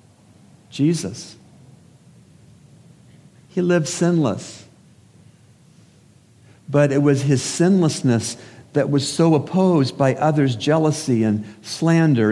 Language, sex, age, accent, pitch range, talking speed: English, male, 60-79, American, 115-155 Hz, 90 wpm